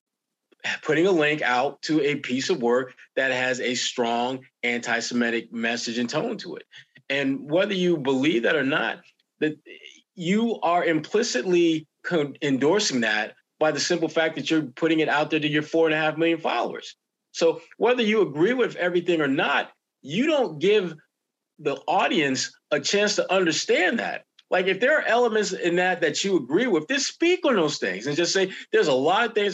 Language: English